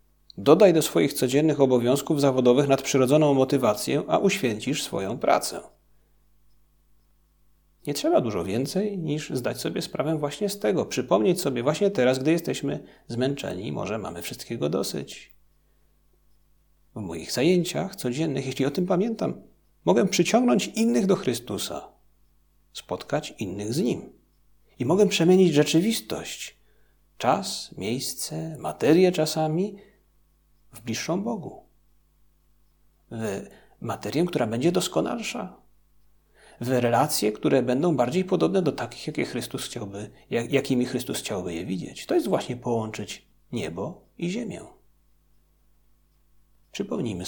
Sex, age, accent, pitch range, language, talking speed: male, 40-59, native, 120-175 Hz, Polish, 110 wpm